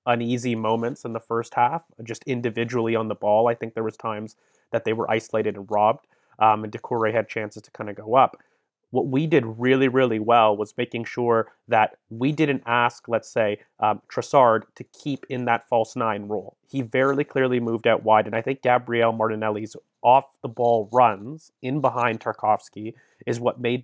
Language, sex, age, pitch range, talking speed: English, male, 30-49, 110-130 Hz, 190 wpm